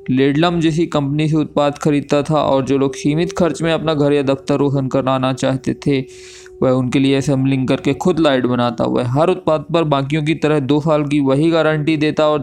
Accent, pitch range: native, 135-160 Hz